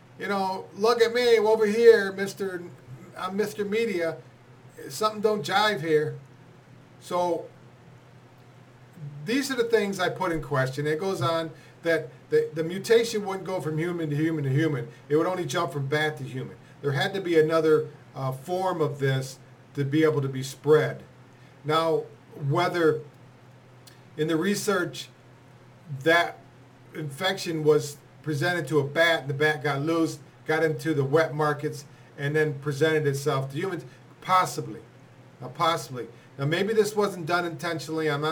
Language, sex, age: English, male, 50-69